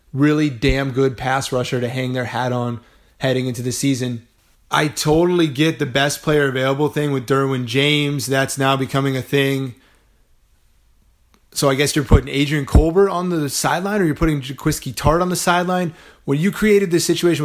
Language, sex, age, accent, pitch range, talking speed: English, male, 20-39, American, 130-150 Hz, 185 wpm